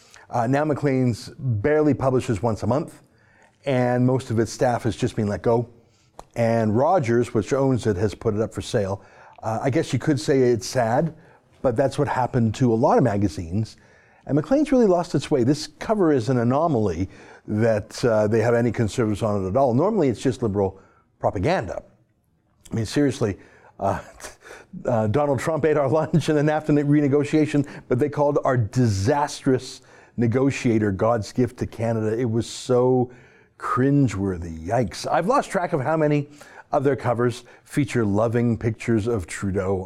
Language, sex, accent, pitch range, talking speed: English, male, American, 110-140 Hz, 175 wpm